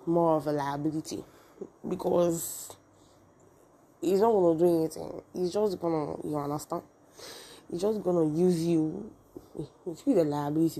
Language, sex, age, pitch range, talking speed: English, female, 20-39, 150-175 Hz, 135 wpm